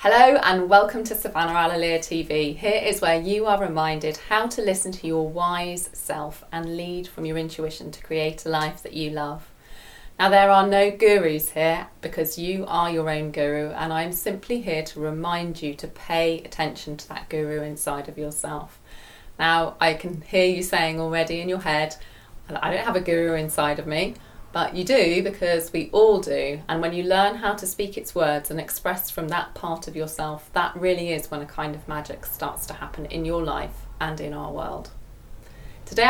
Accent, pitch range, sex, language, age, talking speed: British, 155-195 Hz, female, English, 30-49, 200 wpm